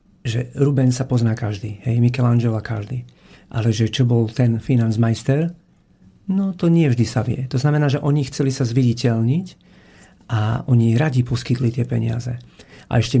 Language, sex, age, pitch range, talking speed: Slovak, male, 40-59, 115-135 Hz, 160 wpm